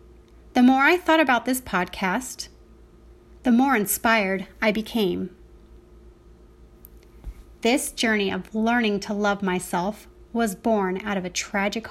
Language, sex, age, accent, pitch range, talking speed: English, female, 30-49, American, 195-235 Hz, 125 wpm